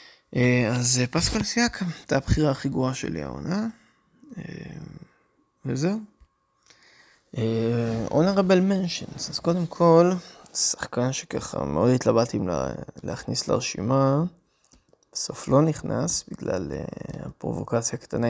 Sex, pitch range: male, 115-160 Hz